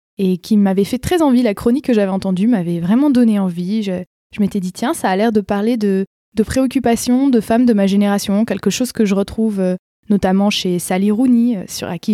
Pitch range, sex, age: 200-270 Hz, female, 20-39